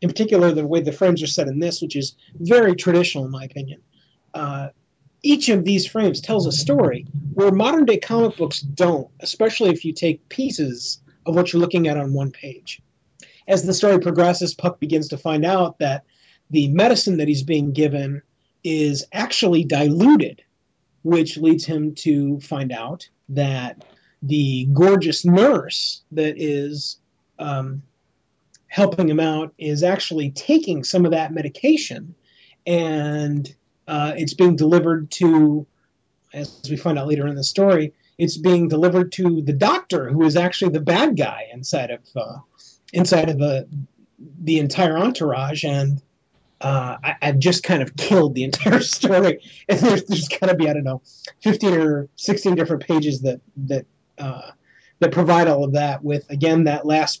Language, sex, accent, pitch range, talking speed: English, male, American, 145-180 Hz, 165 wpm